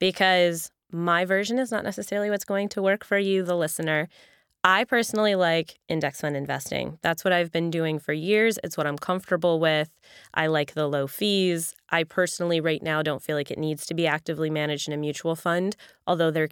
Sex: female